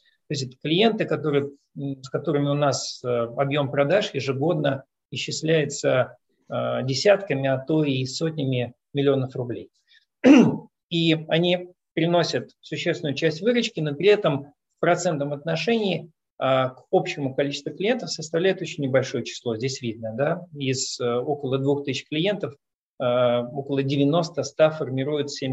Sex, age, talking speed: male, 40-59, 120 wpm